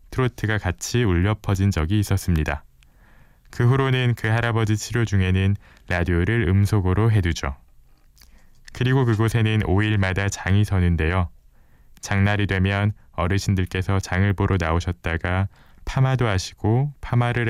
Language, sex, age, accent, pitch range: Korean, male, 20-39, native, 90-110 Hz